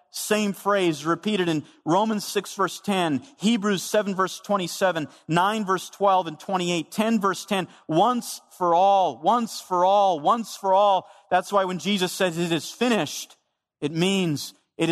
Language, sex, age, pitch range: English, male, 40-59, 145-195 Hz